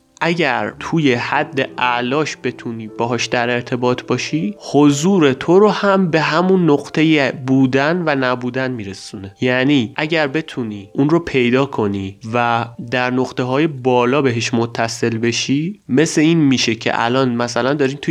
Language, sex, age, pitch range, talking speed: Persian, male, 30-49, 120-155 Hz, 140 wpm